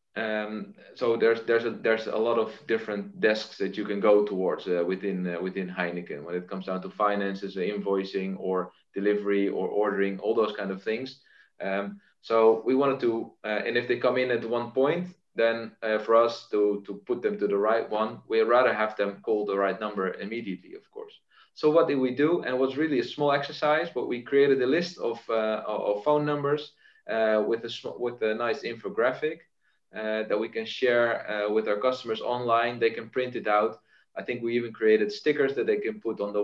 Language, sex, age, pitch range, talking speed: English, male, 20-39, 105-135 Hz, 215 wpm